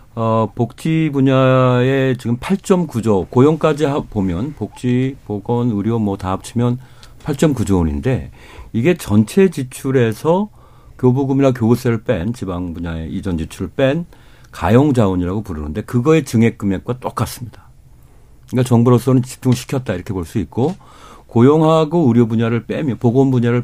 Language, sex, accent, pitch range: Korean, male, native, 100-135 Hz